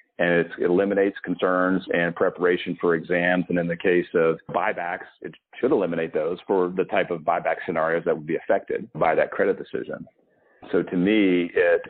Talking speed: 180 wpm